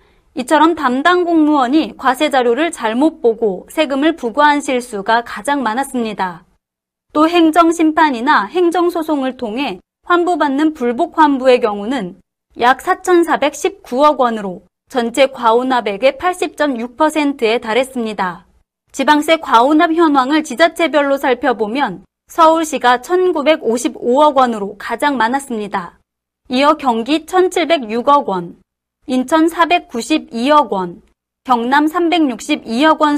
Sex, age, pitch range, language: female, 30-49, 235-310 Hz, Korean